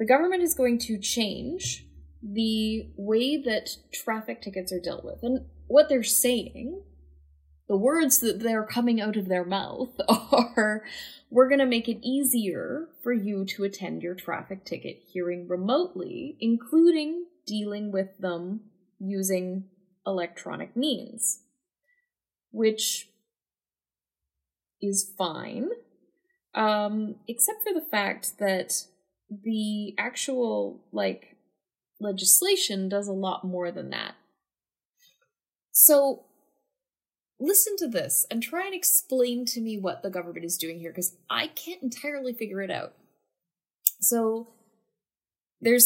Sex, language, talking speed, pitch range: female, English, 125 wpm, 190-265 Hz